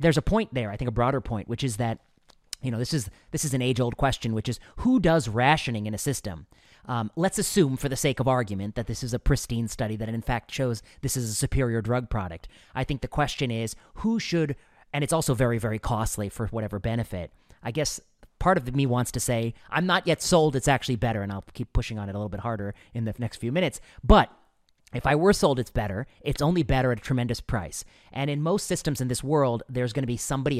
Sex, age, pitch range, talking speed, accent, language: male, 30-49, 115-135 Hz, 245 wpm, American, English